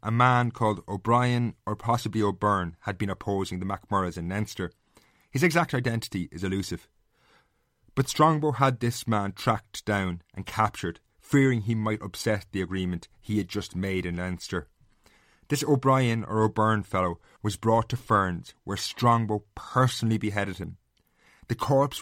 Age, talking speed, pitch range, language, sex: 30-49, 155 wpm, 95-115 Hz, English, male